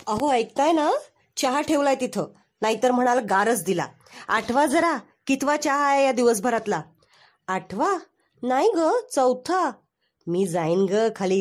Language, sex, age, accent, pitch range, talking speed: Marathi, female, 20-39, native, 210-285 Hz, 125 wpm